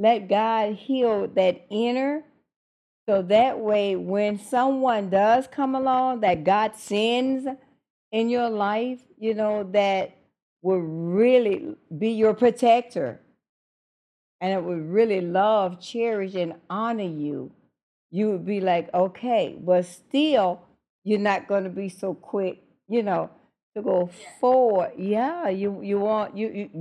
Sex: female